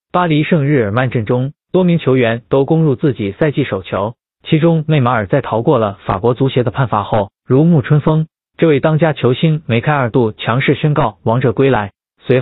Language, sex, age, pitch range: Chinese, male, 20-39, 120-155 Hz